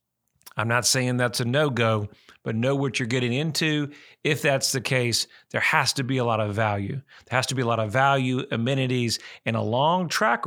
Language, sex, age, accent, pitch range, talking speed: English, male, 40-59, American, 120-145 Hz, 210 wpm